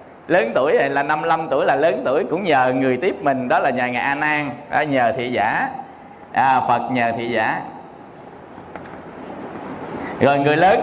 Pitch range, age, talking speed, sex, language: 150-190 Hz, 20-39, 170 wpm, male, Vietnamese